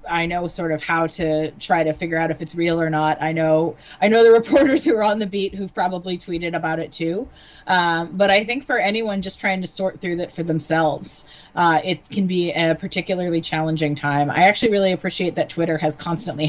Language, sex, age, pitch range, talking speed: English, female, 30-49, 155-180 Hz, 225 wpm